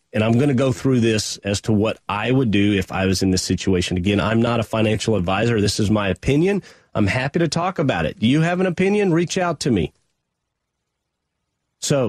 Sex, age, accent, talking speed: male, 40-59, American, 225 wpm